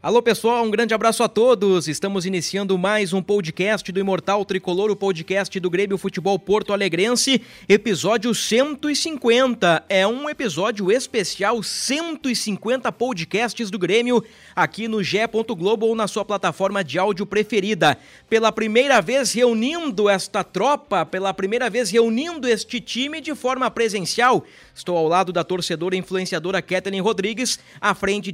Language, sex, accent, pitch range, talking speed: Portuguese, male, Brazilian, 190-235 Hz, 140 wpm